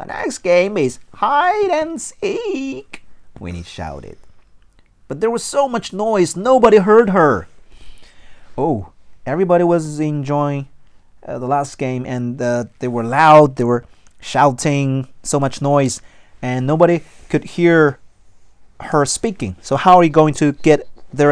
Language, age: Chinese, 30-49